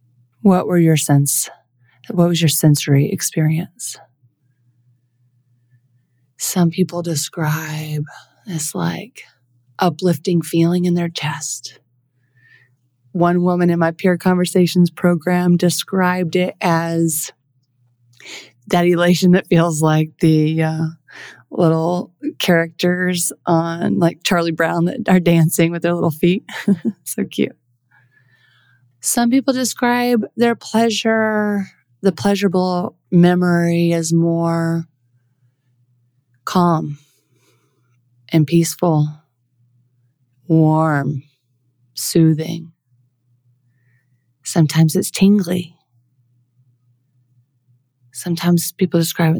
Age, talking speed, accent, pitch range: 30-49, 90 wpm, American, 125-175 Hz